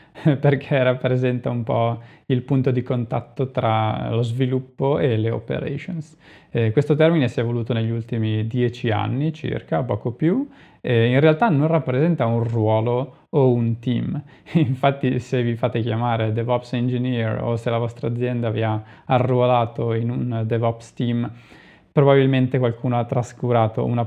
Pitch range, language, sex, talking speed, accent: 115-135 Hz, Italian, male, 145 wpm, native